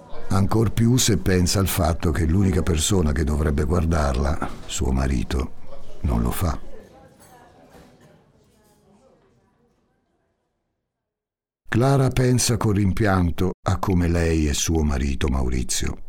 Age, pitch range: 60-79, 75-105 Hz